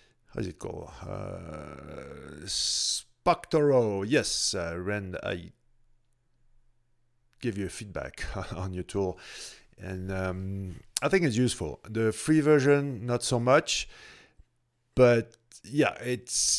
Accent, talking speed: French, 110 wpm